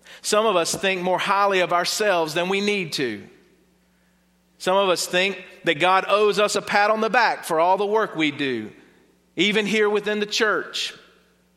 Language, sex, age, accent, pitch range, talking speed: English, male, 40-59, American, 145-190 Hz, 185 wpm